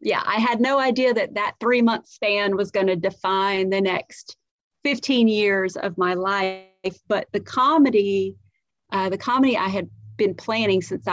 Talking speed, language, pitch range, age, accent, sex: 175 wpm, English, 180-200 Hz, 40-59, American, female